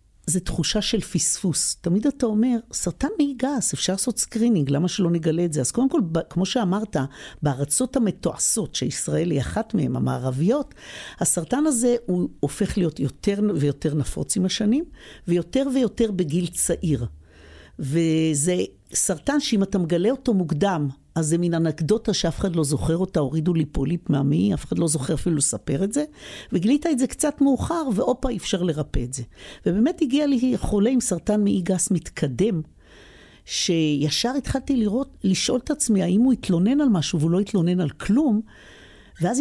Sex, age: female, 60-79